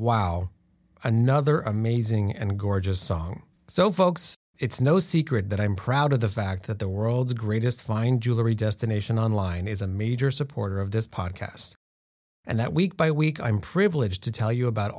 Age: 30-49